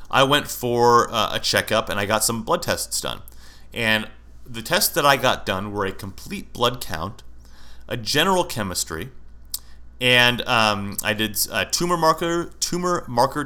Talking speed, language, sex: 165 wpm, English, male